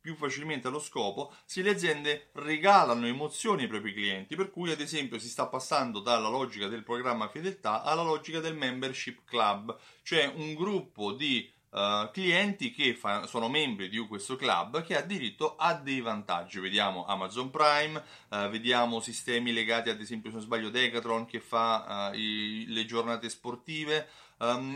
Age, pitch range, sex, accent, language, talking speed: 30-49, 115-170 Hz, male, native, Italian, 165 wpm